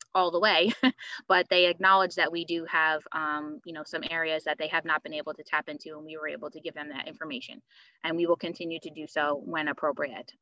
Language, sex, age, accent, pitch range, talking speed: English, female, 20-39, American, 160-175 Hz, 240 wpm